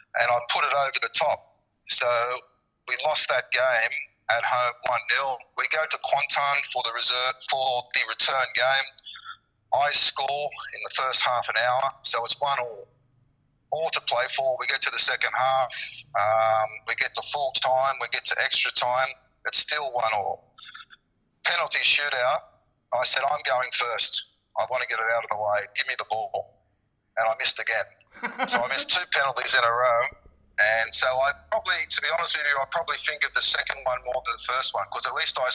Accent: Australian